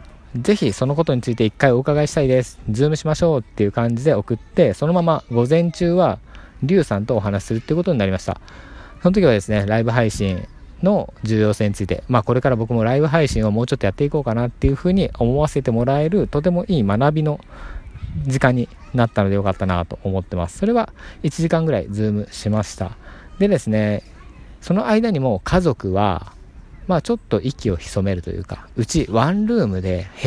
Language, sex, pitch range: Japanese, male, 95-145 Hz